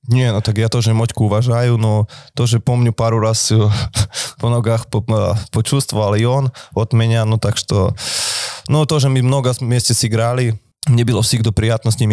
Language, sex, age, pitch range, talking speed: Russian, male, 20-39, 110-125 Hz, 170 wpm